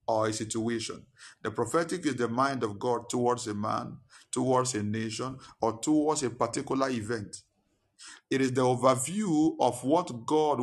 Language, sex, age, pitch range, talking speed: English, male, 50-69, 120-155 Hz, 160 wpm